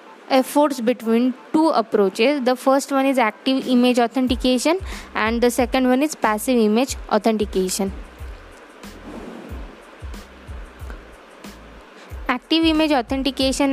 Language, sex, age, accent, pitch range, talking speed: English, female, 20-39, Indian, 235-275 Hz, 95 wpm